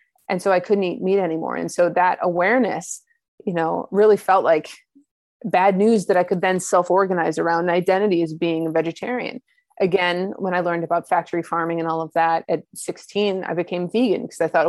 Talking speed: 195 wpm